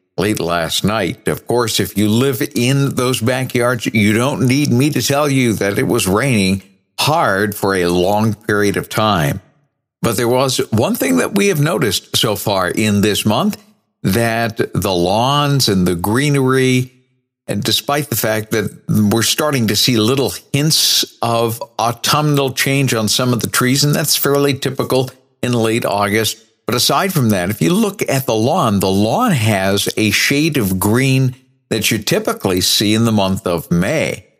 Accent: American